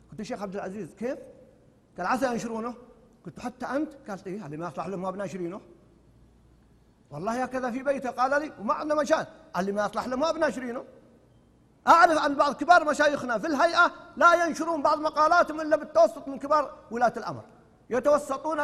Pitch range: 240-305 Hz